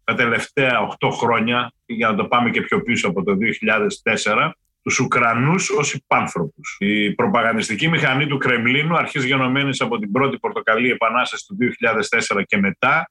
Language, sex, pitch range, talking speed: Greek, male, 125-155 Hz, 155 wpm